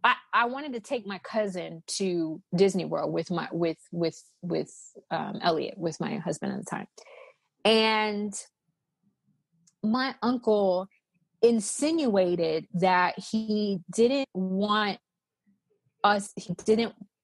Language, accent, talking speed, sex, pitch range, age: English, American, 120 wpm, female, 180-235 Hz, 20-39